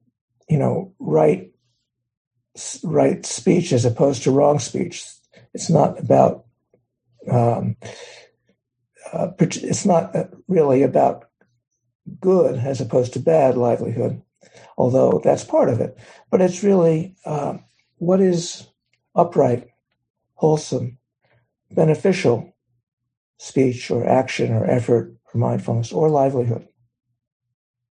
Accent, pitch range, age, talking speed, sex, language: American, 120-155 Hz, 60-79, 105 wpm, male, English